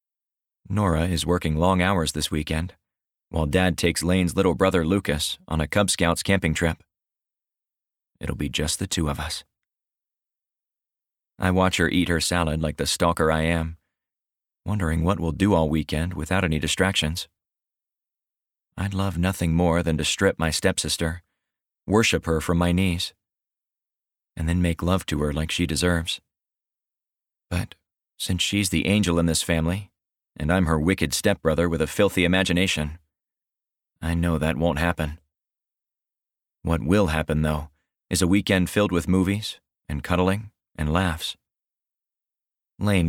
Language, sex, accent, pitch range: English, male, American, 80-95 Hz